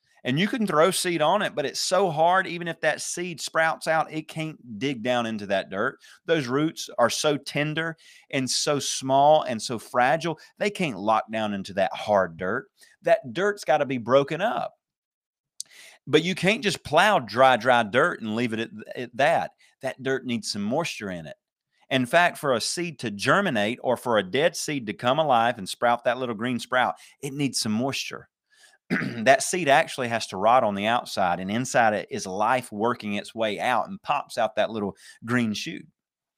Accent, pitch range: American, 120-165 Hz